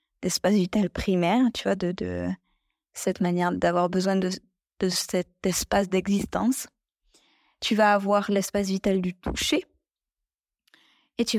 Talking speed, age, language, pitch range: 130 wpm, 20-39, French, 185-235 Hz